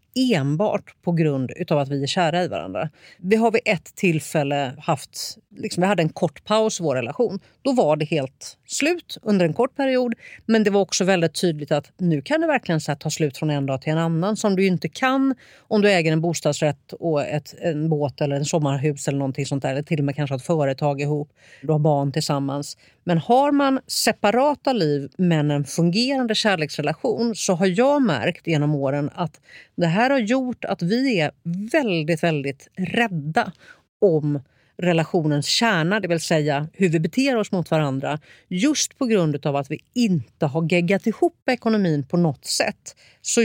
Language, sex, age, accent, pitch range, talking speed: Swedish, female, 40-59, native, 145-210 Hz, 195 wpm